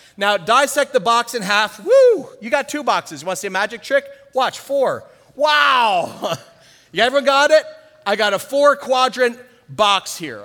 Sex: male